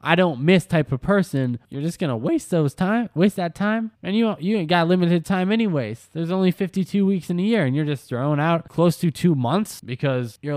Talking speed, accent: 235 wpm, American